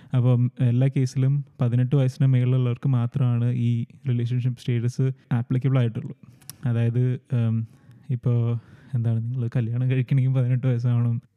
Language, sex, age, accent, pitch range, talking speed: Malayalam, male, 20-39, native, 120-135 Hz, 100 wpm